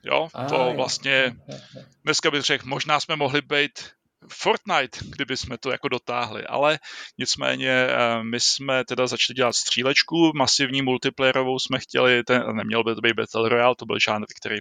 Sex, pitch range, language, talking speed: male, 125-145 Hz, Czech, 155 wpm